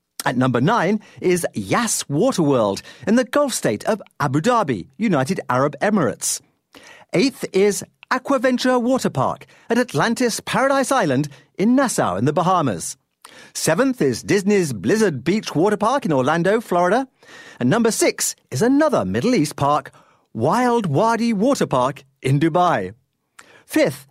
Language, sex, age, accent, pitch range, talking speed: English, male, 50-69, British, 160-250 Hz, 130 wpm